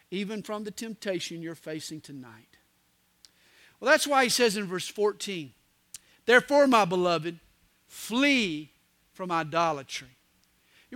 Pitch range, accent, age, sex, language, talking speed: 210-300 Hz, American, 50-69, male, English, 120 wpm